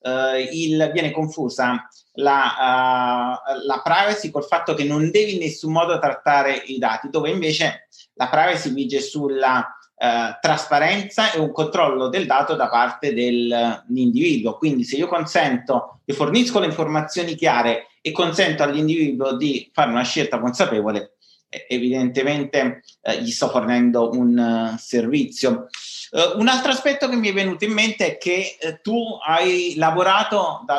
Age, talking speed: 30-49, 140 wpm